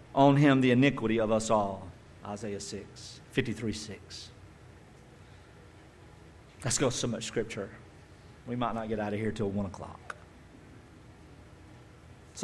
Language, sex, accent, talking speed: English, male, American, 140 wpm